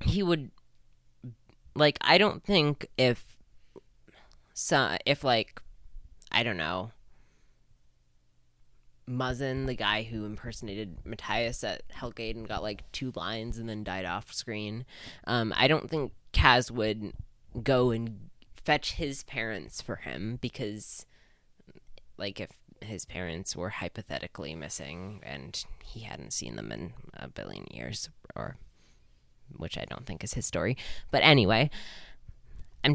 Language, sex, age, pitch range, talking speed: English, female, 20-39, 90-125 Hz, 130 wpm